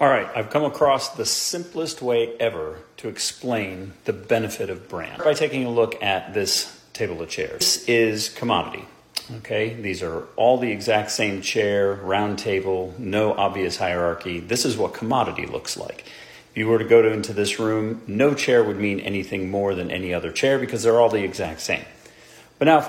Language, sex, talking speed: English, male, 190 wpm